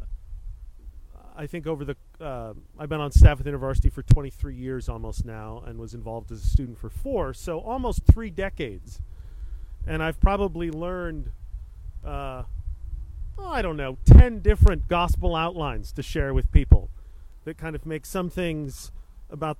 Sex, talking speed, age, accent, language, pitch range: male, 160 wpm, 40-59, American, English, 100-160 Hz